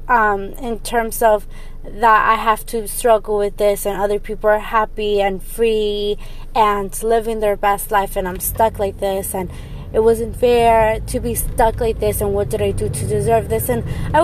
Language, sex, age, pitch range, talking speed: English, female, 20-39, 195-230 Hz, 200 wpm